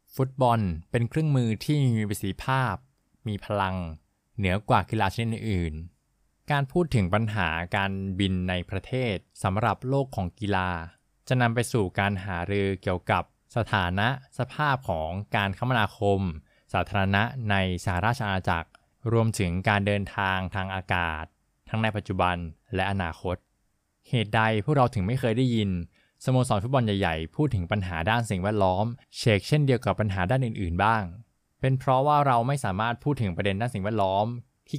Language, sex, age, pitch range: Thai, male, 20-39, 95-120 Hz